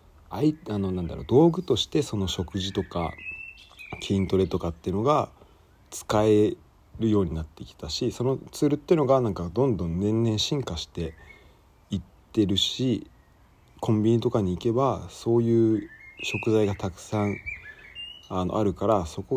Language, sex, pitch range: Japanese, male, 85-120 Hz